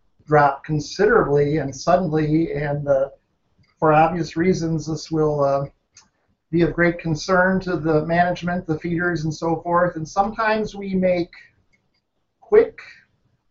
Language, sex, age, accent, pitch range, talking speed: English, male, 50-69, American, 155-190 Hz, 130 wpm